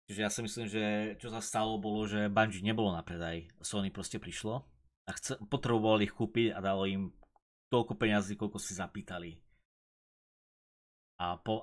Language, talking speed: Slovak, 165 wpm